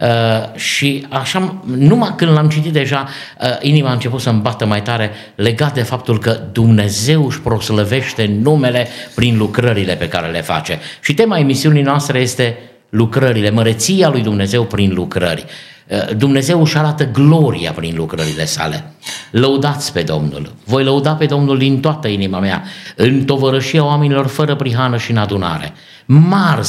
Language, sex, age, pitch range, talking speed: Romanian, male, 50-69, 105-150 Hz, 155 wpm